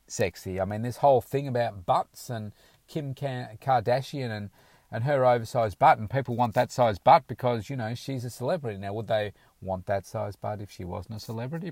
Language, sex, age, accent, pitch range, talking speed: English, male, 40-59, Australian, 95-120 Hz, 205 wpm